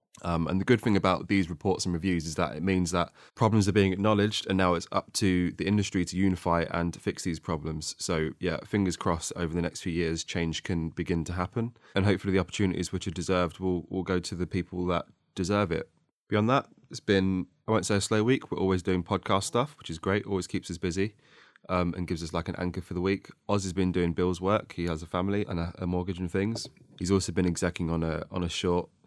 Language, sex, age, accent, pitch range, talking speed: English, male, 20-39, British, 85-100 Hz, 250 wpm